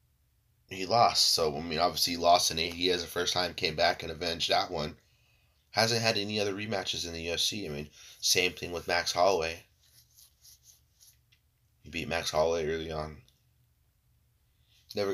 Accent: American